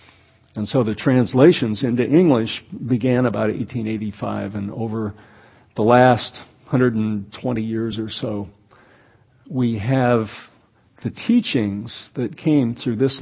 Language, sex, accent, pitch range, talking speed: English, male, American, 110-130 Hz, 115 wpm